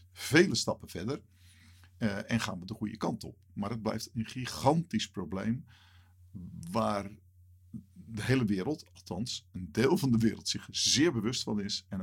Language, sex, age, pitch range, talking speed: Dutch, male, 50-69, 95-115 Hz, 165 wpm